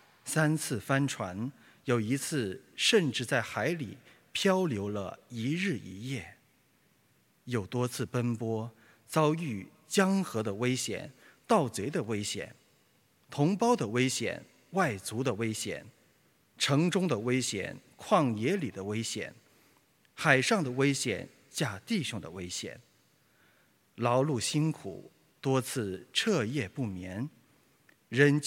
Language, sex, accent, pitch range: English, male, Chinese, 115-155 Hz